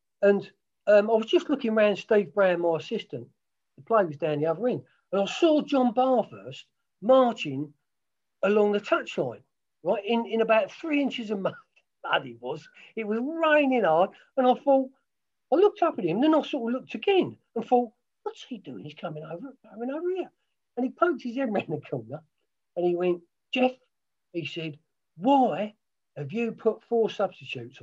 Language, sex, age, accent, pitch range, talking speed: English, male, 50-69, British, 150-225 Hz, 185 wpm